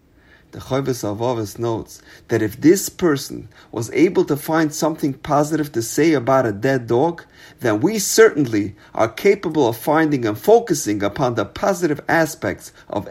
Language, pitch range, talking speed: English, 110-165 Hz, 155 wpm